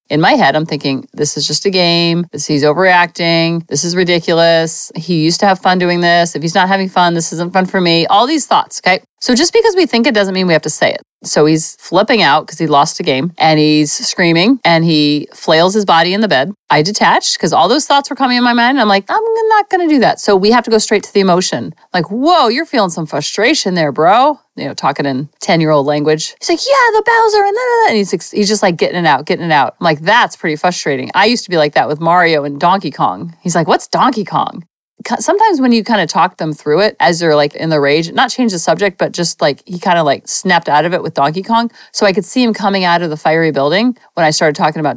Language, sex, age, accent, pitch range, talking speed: English, female, 40-59, American, 160-215 Hz, 265 wpm